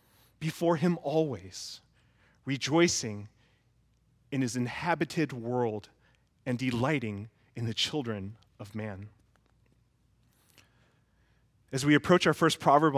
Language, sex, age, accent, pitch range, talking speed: English, male, 30-49, American, 125-180 Hz, 95 wpm